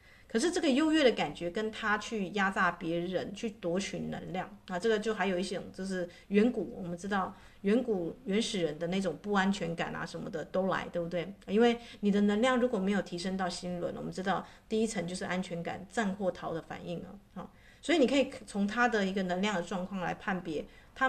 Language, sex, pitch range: Chinese, female, 175-220 Hz